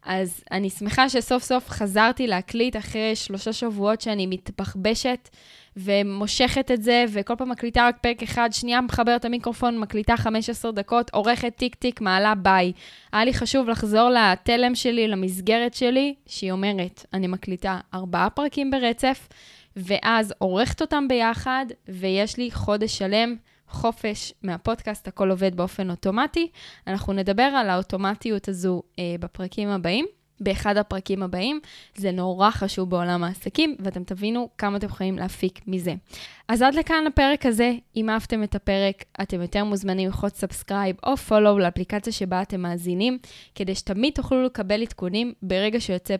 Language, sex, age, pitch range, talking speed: Hebrew, female, 10-29, 190-240 Hz, 145 wpm